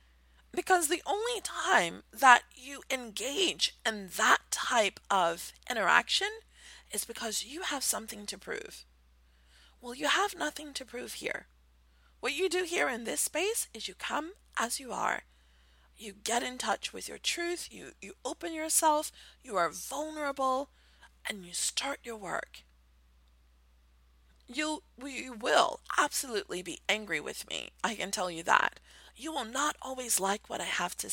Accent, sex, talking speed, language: American, female, 150 wpm, English